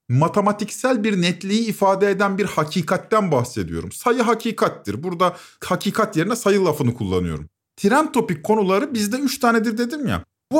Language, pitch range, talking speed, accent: Turkish, 150-215 Hz, 140 wpm, native